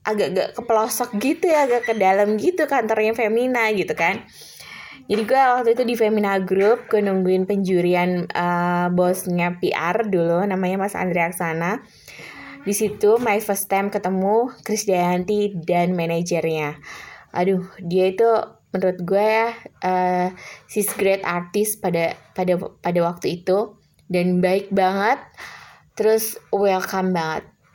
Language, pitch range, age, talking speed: Indonesian, 175-215 Hz, 20-39, 130 wpm